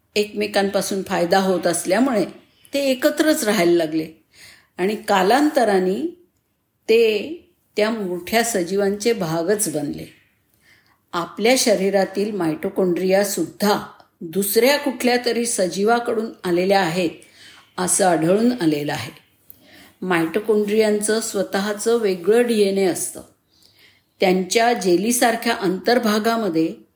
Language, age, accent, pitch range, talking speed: Marathi, 50-69, native, 185-235 Hz, 80 wpm